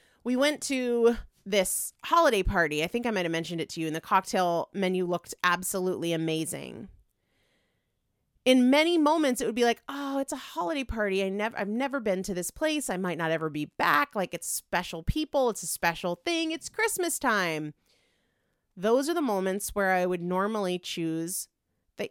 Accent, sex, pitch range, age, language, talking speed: American, female, 175-265 Hz, 30-49, English, 190 wpm